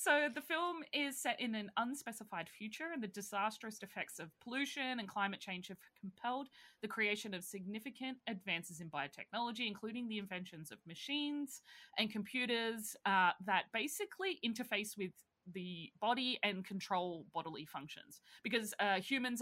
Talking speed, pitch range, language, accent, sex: 150 wpm, 180-235 Hz, English, Australian, female